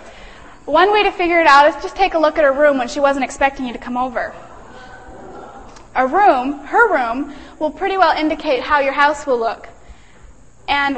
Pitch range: 250-315 Hz